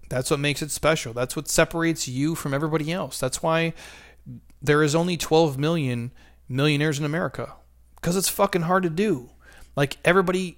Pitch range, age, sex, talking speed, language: 130-170 Hz, 30-49, male, 170 wpm, English